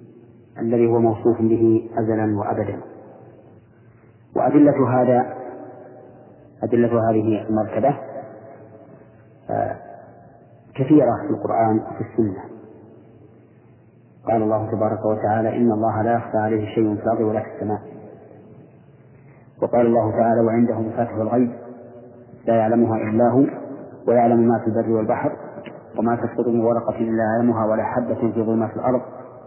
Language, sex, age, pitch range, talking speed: Arabic, male, 40-59, 110-120 Hz, 115 wpm